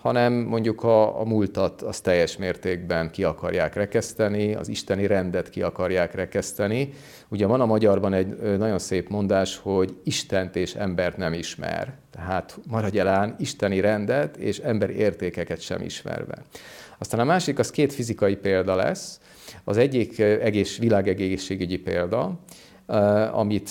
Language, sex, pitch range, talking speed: Hungarian, male, 95-110 Hz, 140 wpm